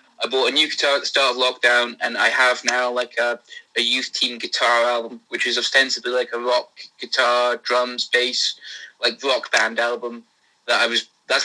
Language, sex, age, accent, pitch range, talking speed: English, male, 20-39, British, 120-140 Hz, 200 wpm